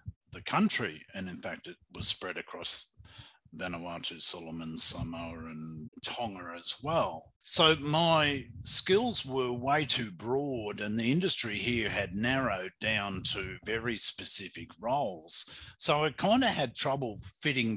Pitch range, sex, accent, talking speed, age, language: 95-130 Hz, male, Australian, 140 wpm, 50-69, English